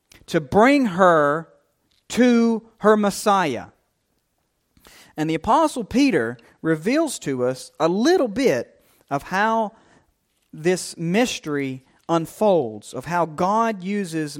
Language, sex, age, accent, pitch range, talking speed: English, male, 40-59, American, 150-225 Hz, 105 wpm